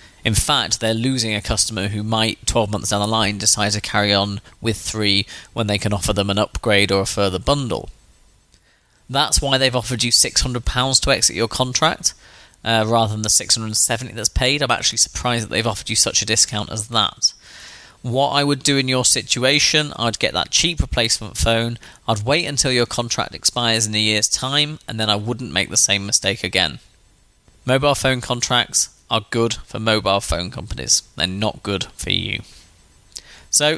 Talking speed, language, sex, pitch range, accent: 190 wpm, English, male, 105-135 Hz, British